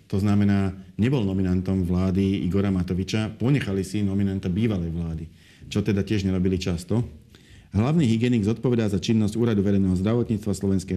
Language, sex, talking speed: Slovak, male, 140 wpm